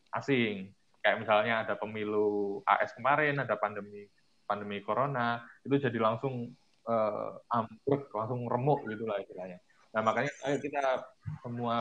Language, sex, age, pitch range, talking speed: Indonesian, male, 20-39, 110-130 Hz, 125 wpm